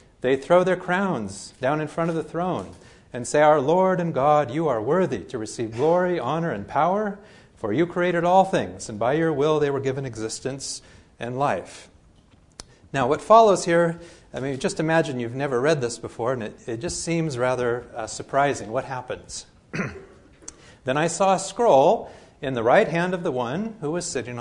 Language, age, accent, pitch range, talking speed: English, 40-59, American, 125-175 Hz, 190 wpm